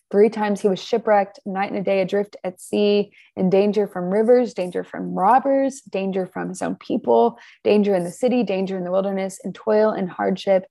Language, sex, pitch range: English, female, 180-205 Hz